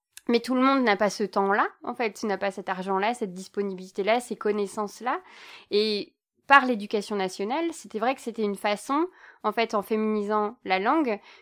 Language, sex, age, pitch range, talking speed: French, female, 20-39, 200-245 Hz, 185 wpm